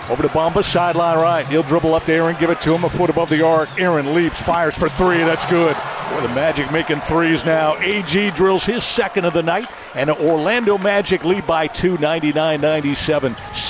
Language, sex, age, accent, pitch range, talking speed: English, male, 50-69, American, 155-180 Hz, 205 wpm